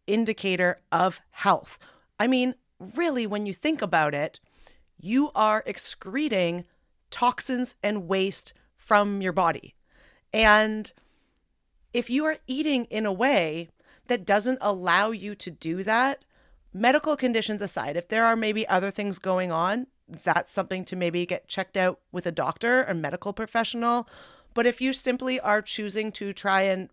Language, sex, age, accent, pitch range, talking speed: English, female, 30-49, American, 180-245 Hz, 150 wpm